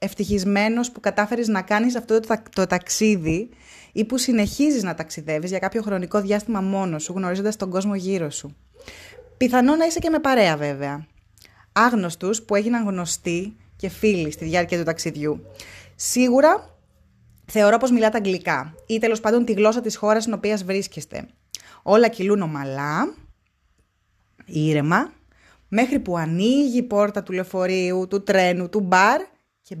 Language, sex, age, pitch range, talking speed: Greek, female, 20-39, 170-215 Hz, 150 wpm